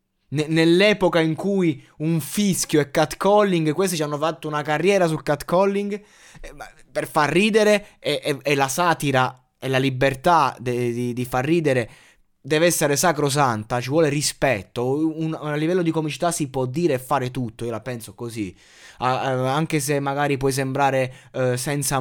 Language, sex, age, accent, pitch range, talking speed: Italian, male, 20-39, native, 130-185 Hz, 165 wpm